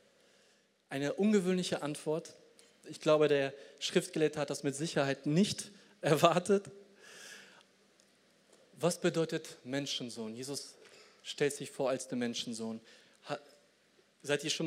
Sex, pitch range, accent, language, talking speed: male, 140-175 Hz, German, German, 110 wpm